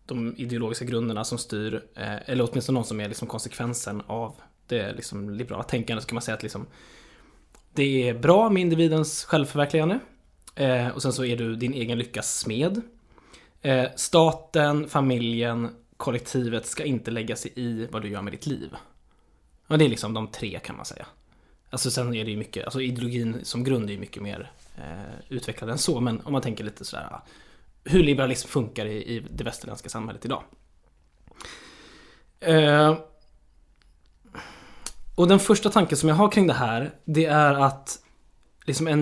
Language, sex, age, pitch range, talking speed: Swedish, male, 20-39, 110-145 Hz, 160 wpm